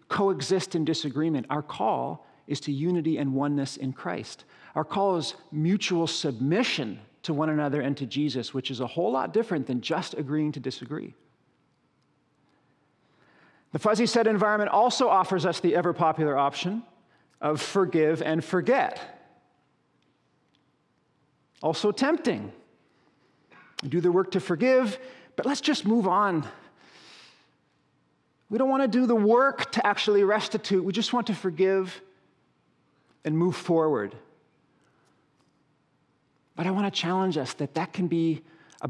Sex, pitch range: male, 145-205 Hz